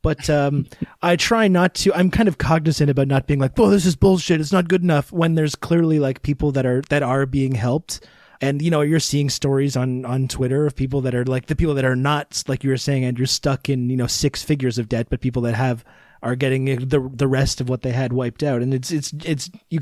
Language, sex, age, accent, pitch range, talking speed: English, male, 30-49, American, 125-150 Hz, 260 wpm